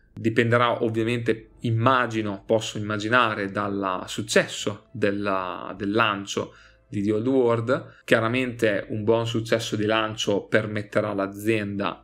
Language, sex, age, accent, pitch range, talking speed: Italian, male, 20-39, native, 105-120 Hz, 105 wpm